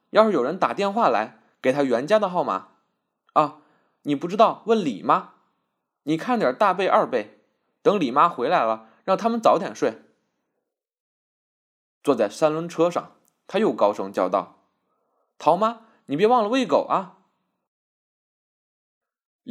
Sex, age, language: male, 20-39, Chinese